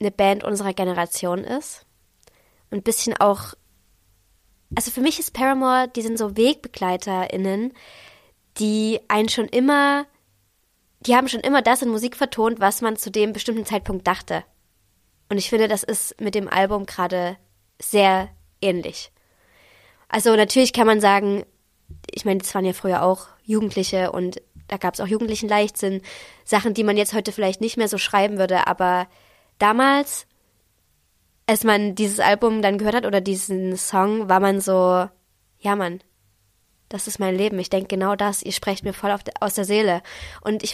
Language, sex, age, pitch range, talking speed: German, female, 20-39, 190-225 Hz, 170 wpm